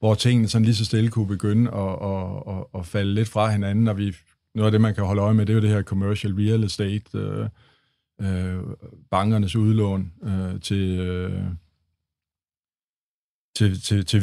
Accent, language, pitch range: native, Danish, 95-110 Hz